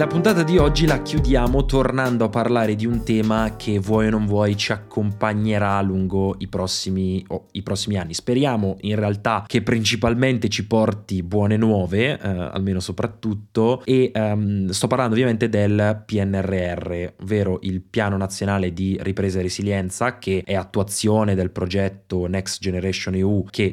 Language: Italian